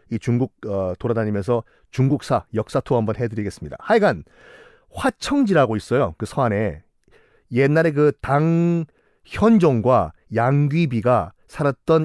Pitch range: 115-165 Hz